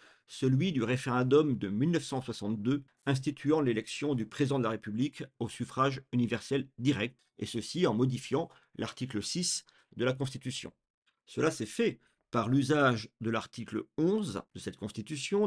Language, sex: French, male